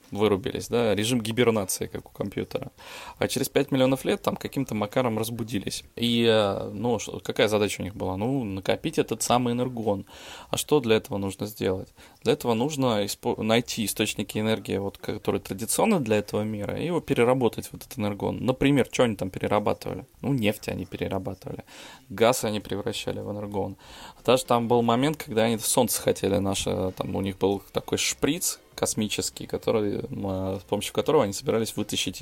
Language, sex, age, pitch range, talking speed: Russian, male, 20-39, 100-120 Hz, 170 wpm